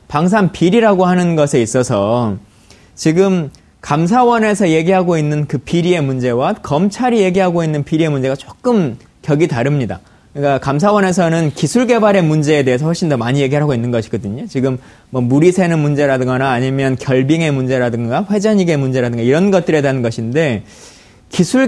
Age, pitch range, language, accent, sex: 20-39, 135-195 Hz, Korean, native, male